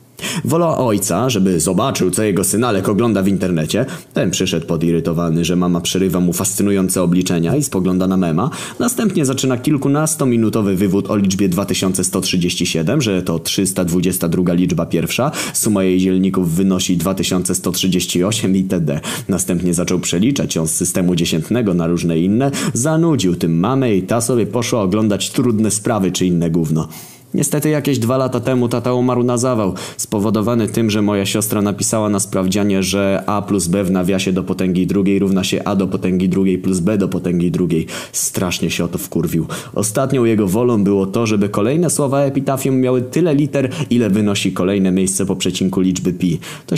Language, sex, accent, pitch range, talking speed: Polish, male, native, 90-125 Hz, 165 wpm